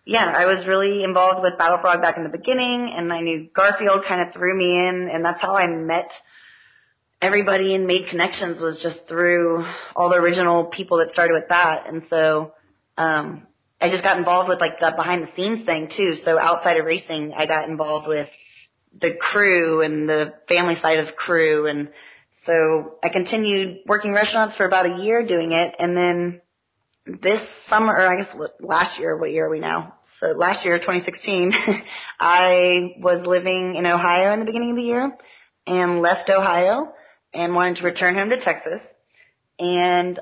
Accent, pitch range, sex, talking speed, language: American, 165-190 Hz, female, 185 wpm, English